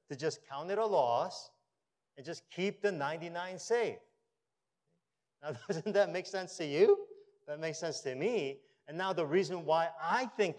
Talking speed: 175 wpm